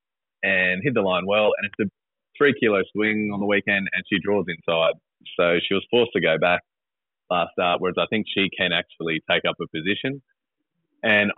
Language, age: English, 20-39